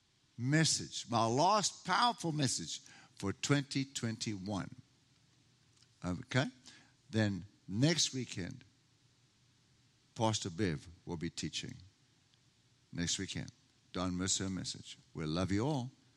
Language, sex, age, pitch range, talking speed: English, male, 60-79, 100-130 Hz, 100 wpm